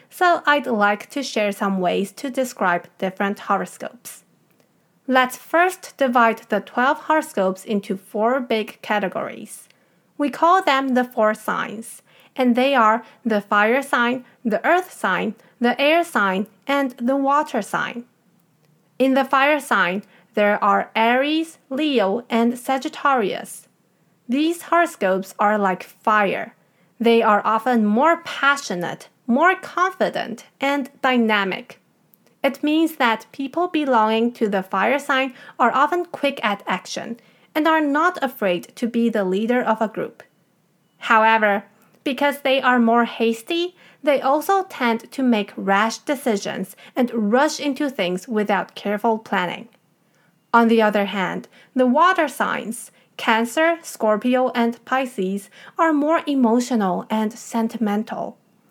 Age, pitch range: 30-49, 210-275 Hz